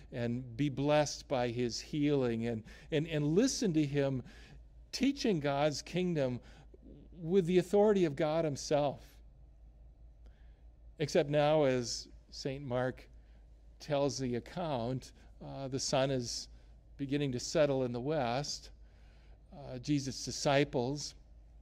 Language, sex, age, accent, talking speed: English, male, 50-69, American, 115 wpm